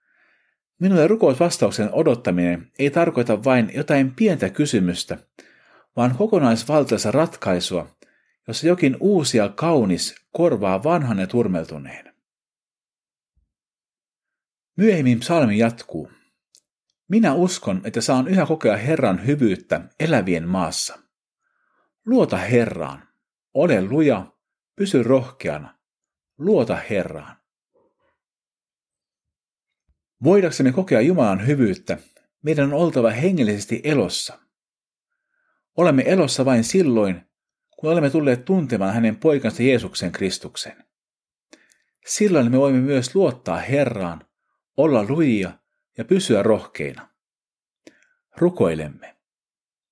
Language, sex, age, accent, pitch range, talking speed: Finnish, male, 50-69, native, 110-185 Hz, 90 wpm